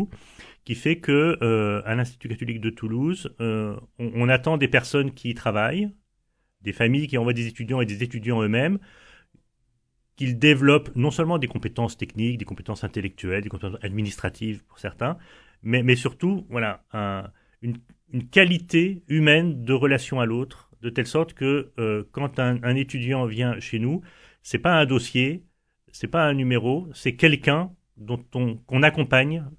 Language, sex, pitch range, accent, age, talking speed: French, male, 110-140 Hz, French, 40-59, 160 wpm